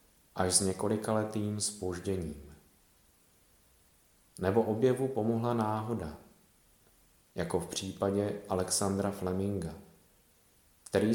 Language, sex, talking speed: Czech, male, 75 wpm